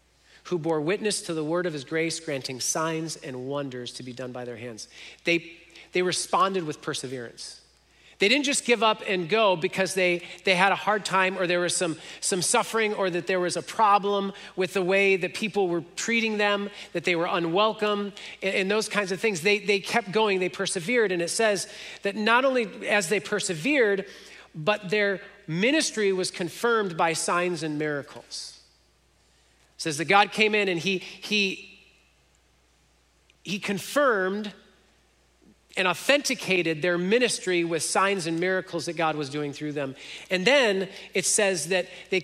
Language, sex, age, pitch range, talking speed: English, male, 40-59, 160-205 Hz, 175 wpm